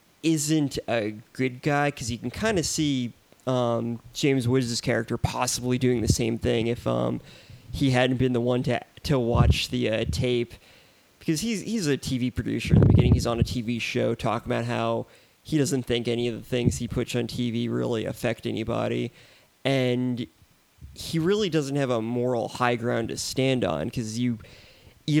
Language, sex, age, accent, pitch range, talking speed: English, male, 20-39, American, 115-130 Hz, 185 wpm